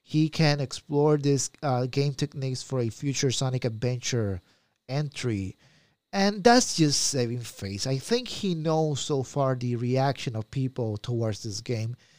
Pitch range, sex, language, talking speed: 125-170 Hz, male, English, 155 wpm